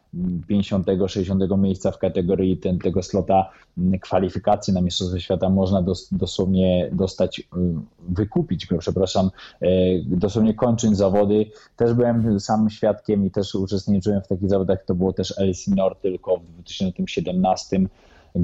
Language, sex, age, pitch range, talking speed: Polish, male, 20-39, 90-105 Hz, 125 wpm